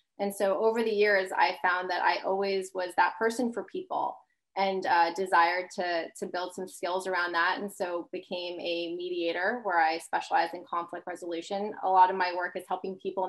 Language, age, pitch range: English, 20-39, 180-210 Hz